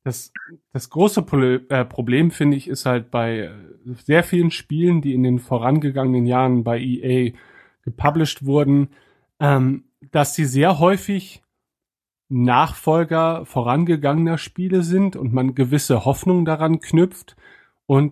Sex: male